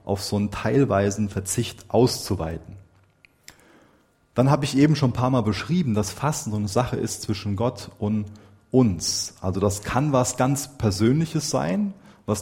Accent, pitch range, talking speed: German, 100-130 Hz, 160 wpm